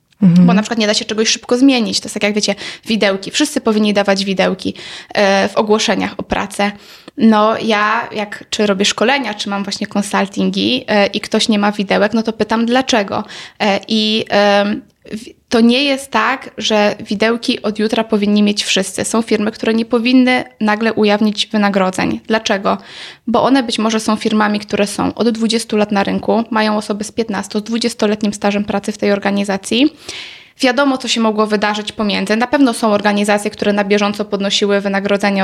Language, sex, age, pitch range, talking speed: Polish, female, 20-39, 205-235 Hz, 180 wpm